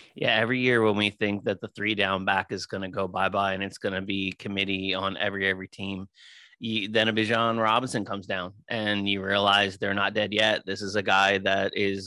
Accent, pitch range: American, 100-125 Hz